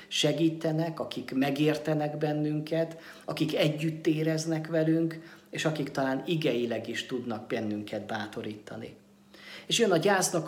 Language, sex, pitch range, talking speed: Hungarian, male, 125-160 Hz, 115 wpm